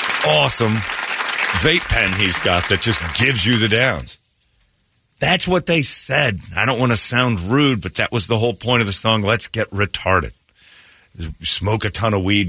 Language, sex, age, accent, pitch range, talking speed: English, male, 40-59, American, 100-130 Hz, 185 wpm